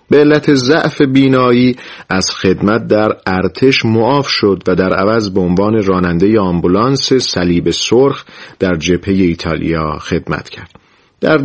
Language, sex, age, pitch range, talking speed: Persian, male, 40-59, 90-120 Hz, 130 wpm